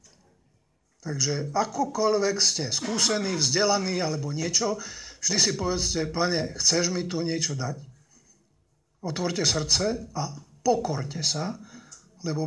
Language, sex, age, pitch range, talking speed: Slovak, male, 50-69, 145-195 Hz, 105 wpm